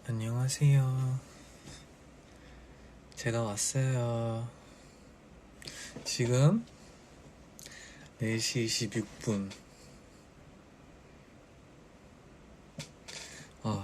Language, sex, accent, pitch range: English, male, Korean, 100-130 Hz